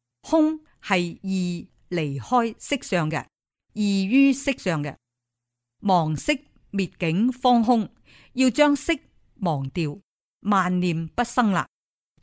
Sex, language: female, Chinese